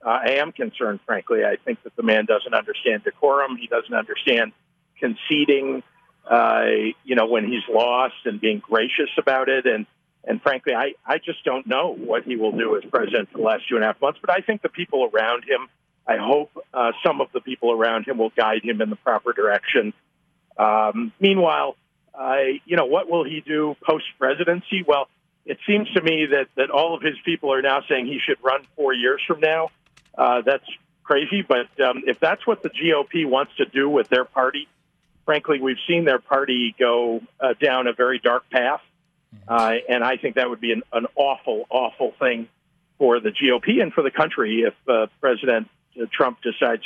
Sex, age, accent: male, 50-69, American